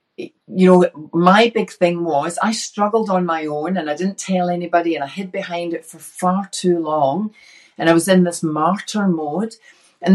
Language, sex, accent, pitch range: English, female, British, 150-195 Hz